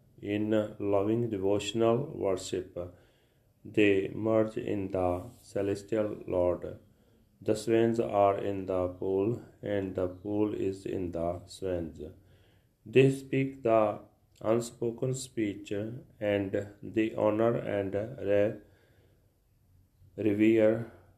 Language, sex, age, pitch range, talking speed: Punjabi, male, 30-49, 95-115 Hz, 95 wpm